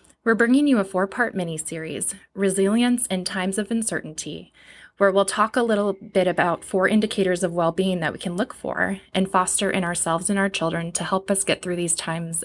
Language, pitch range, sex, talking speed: English, 175-210 Hz, female, 200 wpm